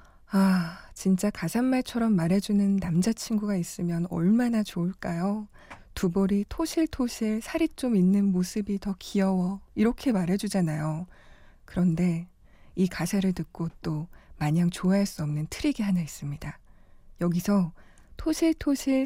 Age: 20-39